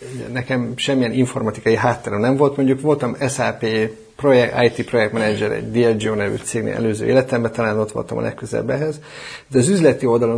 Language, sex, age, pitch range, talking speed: Hungarian, male, 30-49, 120-140 Hz, 160 wpm